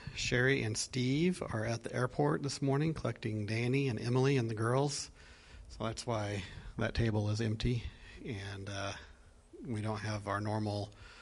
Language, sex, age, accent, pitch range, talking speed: English, male, 40-59, American, 105-120 Hz, 160 wpm